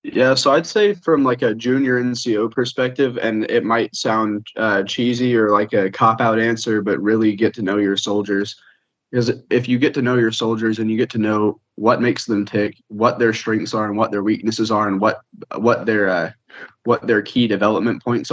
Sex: male